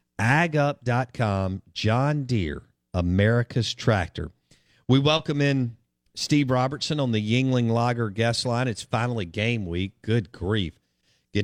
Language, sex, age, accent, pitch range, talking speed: English, male, 50-69, American, 95-125 Hz, 120 wpm